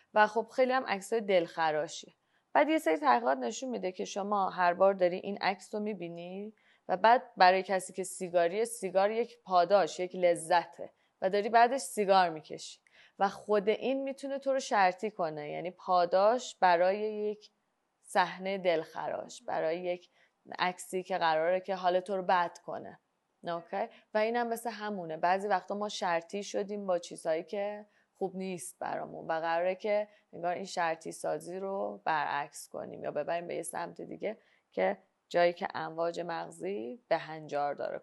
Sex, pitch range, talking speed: female, 175-210 Hz, 160 wpm